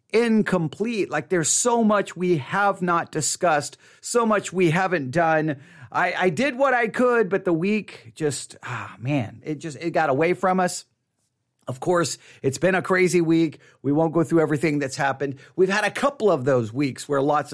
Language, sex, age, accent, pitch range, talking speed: English, male, 40-59, American, 140-185 Hz, 190 wpm